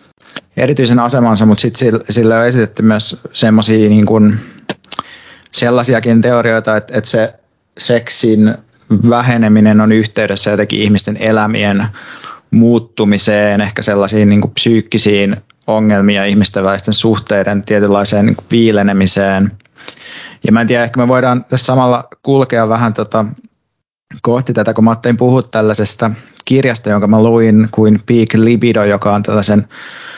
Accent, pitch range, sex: native, 105-115 Hz, male